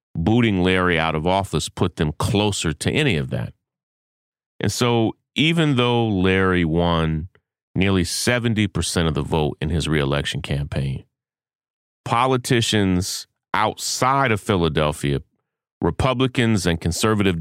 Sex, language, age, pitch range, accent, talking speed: male, English, 30-49, 80-115 Hz, American, 115 wpm